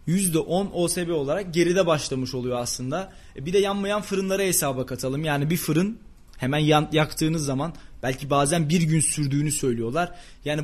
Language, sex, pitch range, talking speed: Turkish, male, 150-195 Hz, 145 wpm